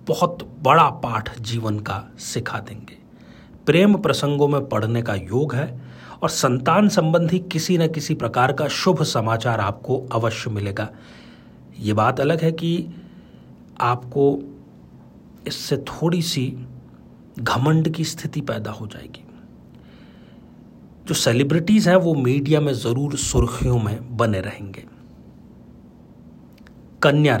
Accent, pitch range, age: native, 115-155 Hz, 40-59